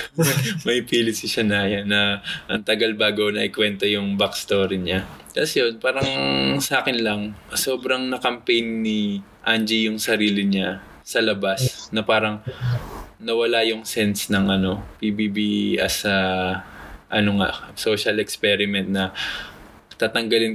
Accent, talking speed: native, 125 wpm